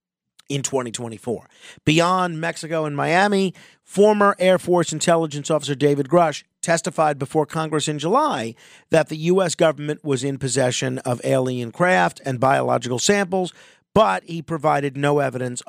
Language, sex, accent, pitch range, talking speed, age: English, male, American, 135-180 Hz, 140 wpm, 50-69